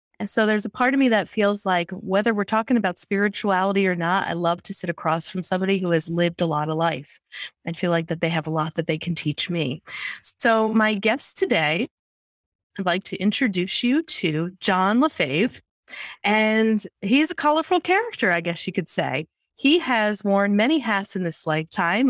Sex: female